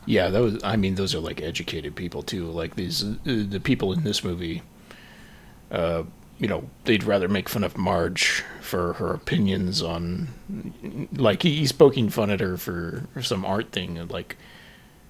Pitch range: 90-115 Hz